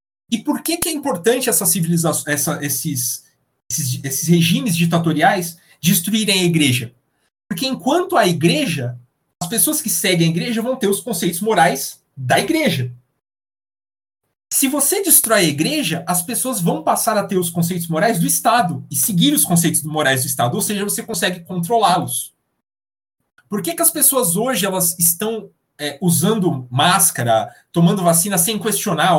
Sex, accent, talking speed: male, Brazilian, 145 wpm